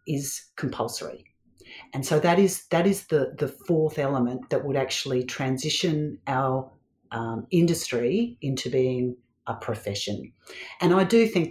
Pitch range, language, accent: 125-150 Hz, English, Australian